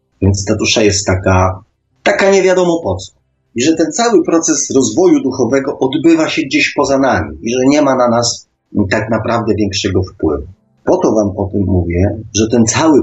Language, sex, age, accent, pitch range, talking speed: Polish, male, 30-49, native, 95-115 Hz, 185 wpm